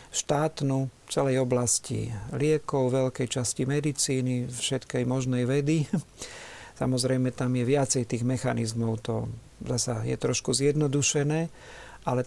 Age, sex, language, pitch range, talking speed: 50-69, male, Slovak, 125-150 Hz, 115 wpm